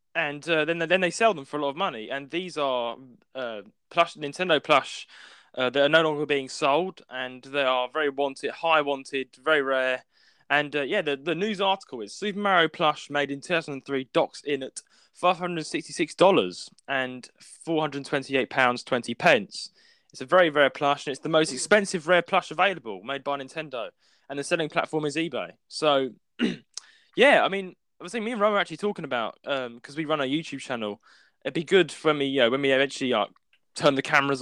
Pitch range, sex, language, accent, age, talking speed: 130-165 Hz, male, English, British, 20-39, 220 wpm